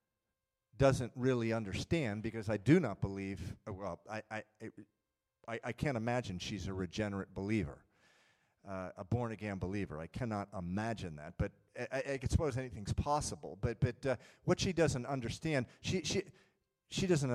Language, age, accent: English, 40-59, American